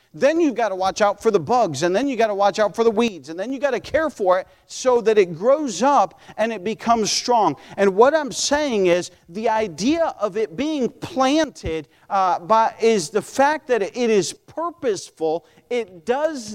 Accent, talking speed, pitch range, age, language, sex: American, 205 wpm, 210-290 Hz, 40-59, English, male